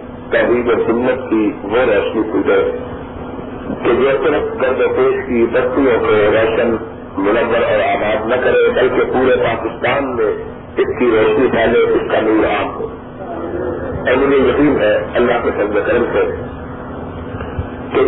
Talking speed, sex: 120 wpm, male